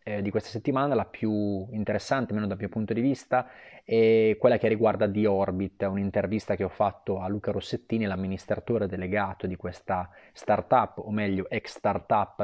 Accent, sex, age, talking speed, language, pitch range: native, male, 20-39, 165 wpm, Italian, 100-115 Hz